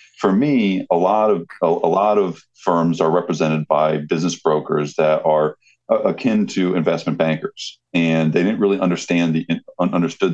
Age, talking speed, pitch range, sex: 40-59, 155 wpm, 80-90 Hz, male